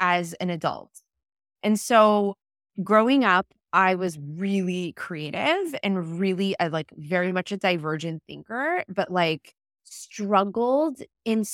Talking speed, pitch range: 120 wpm, 170-210 Hz